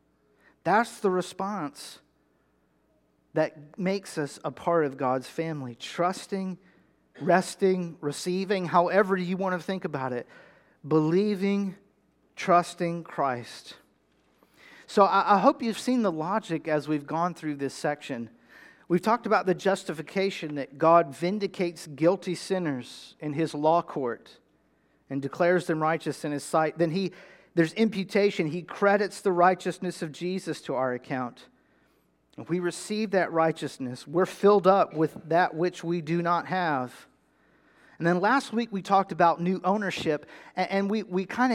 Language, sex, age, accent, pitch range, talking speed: English, male, 40-59, American, 150-190 Hz, 140 wpm